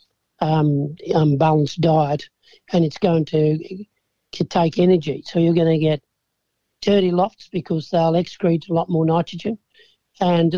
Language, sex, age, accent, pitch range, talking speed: English, male, 60-79, Australian, 160-185 Hz, 145 wpm